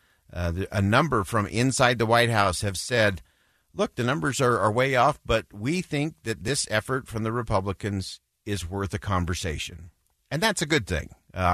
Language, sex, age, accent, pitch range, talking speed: English, male, 50-69, American, 95-125 Hz, 185 wpm